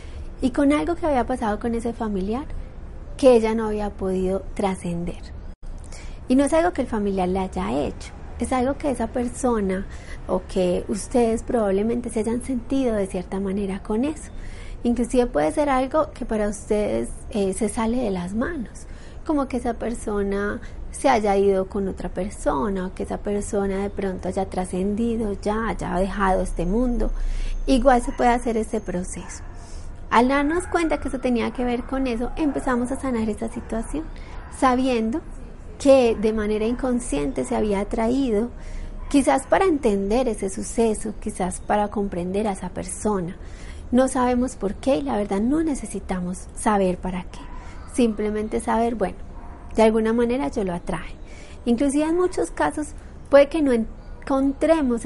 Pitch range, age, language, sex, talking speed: 195-255 Hz, 30-49, Spanish, female, 160 wpm